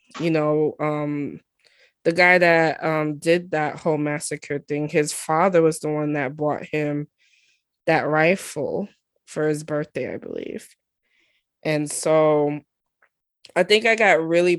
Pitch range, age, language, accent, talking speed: 150-180 Hz, 20-39, English, American, 140 wpm